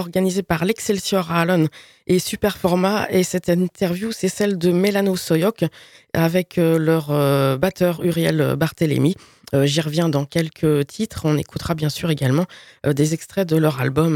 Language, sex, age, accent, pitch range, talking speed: French, female, 20-39, French, 155-200 Hz, 155 wpm